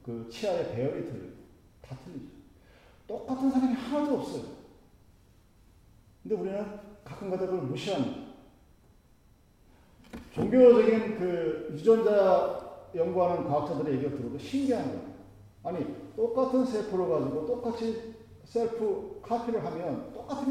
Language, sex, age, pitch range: Korean, male, 40-59, 140-230 Hz